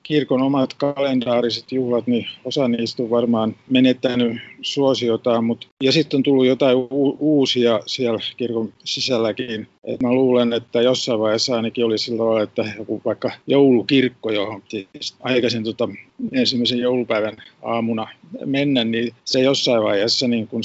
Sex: male